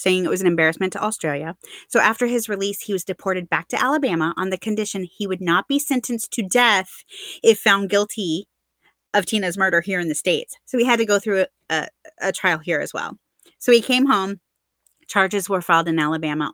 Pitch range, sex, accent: 175-235 Hz, female, American